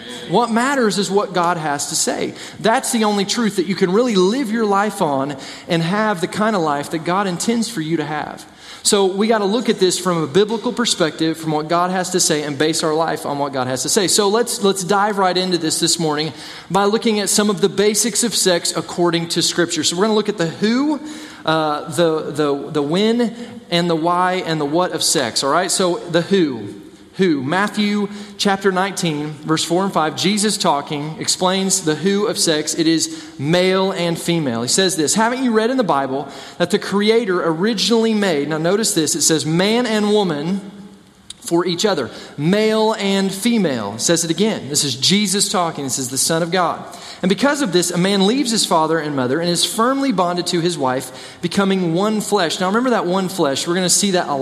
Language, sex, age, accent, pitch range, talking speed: English, male, 30-49, American, 160-205 Hz, 220 wpm